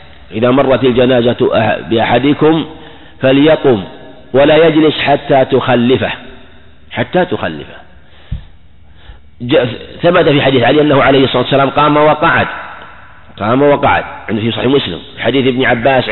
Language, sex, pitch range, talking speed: Arabic, male, 110-135 Hz, 110 wpm